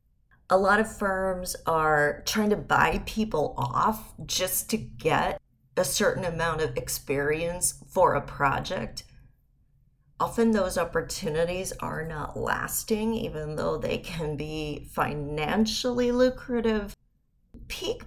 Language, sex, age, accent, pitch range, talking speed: English, female, 30-49, American, 160-225 Hz, 115 wpm